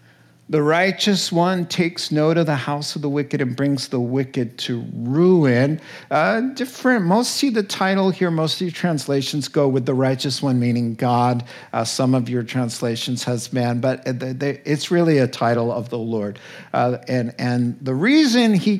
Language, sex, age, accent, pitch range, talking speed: English, male, 50-69, American, 125-170 Hz, 180 wpm